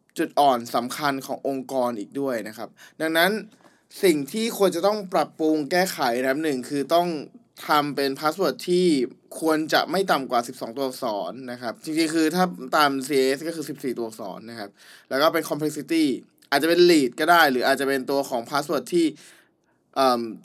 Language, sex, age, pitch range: Thai, male, 20-39, 135-180 Hz